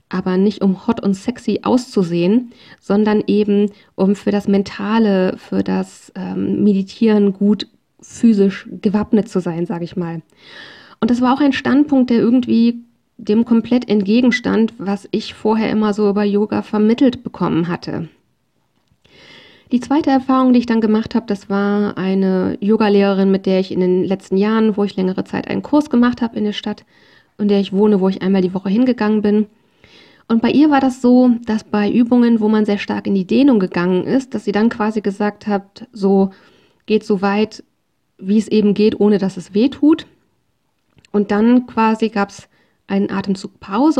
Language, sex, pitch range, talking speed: German, female, 195-235 Hz, 180 wpm